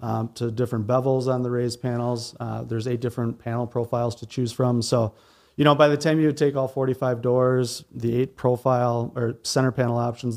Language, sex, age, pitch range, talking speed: English, male, 30-49, 120-140 Hz, 215 wpm